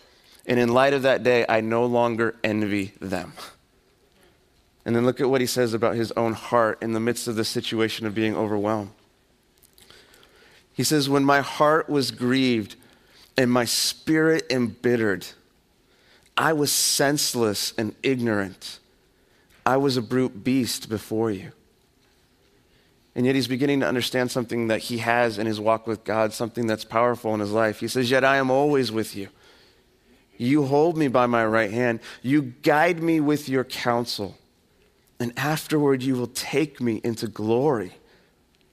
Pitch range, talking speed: 110-130 Hz, 160 wpm